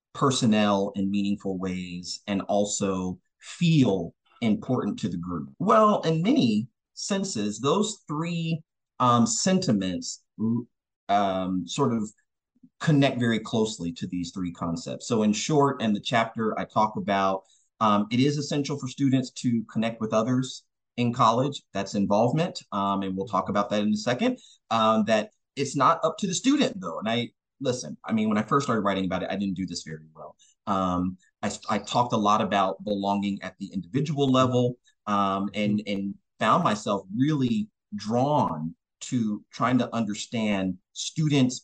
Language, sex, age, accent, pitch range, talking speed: English, male, 30-49, American, 100-145 Hz, 160 wpm